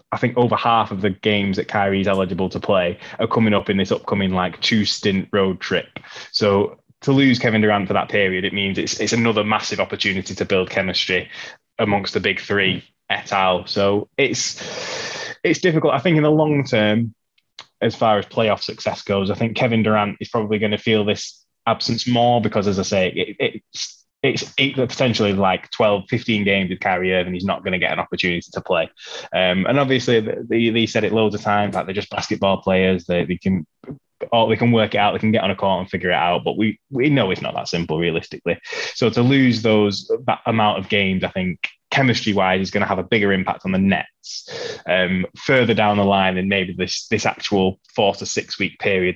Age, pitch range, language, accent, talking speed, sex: 20-39, 95-115 Hz, English, British, 220 wpm, male